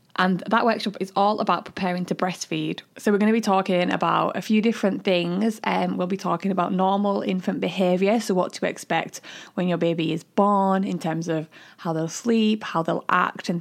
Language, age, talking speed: English, 20-39, 205 wpm